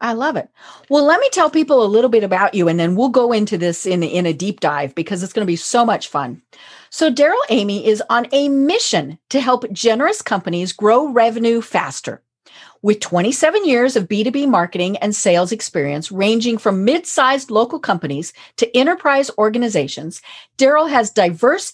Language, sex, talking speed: English, female, 180 wpm